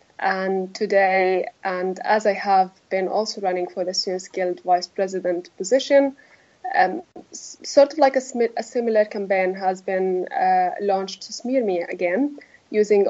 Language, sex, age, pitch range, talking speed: English, female, 20-39, 195-240 Hz, 150 wpm